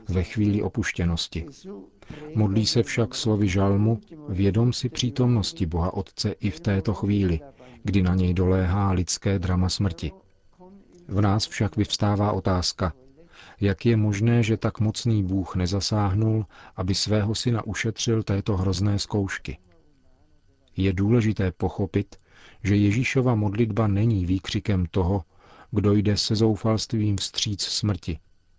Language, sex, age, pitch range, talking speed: Czech, male, 40-59, 95-110 Hz, 125 wpm